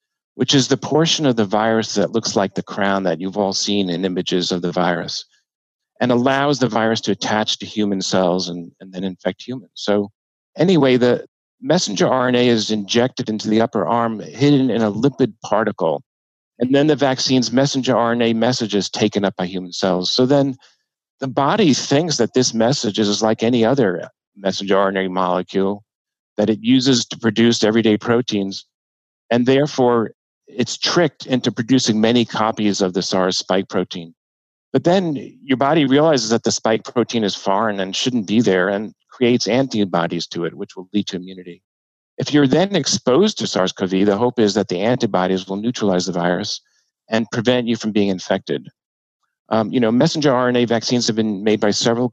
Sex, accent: male, American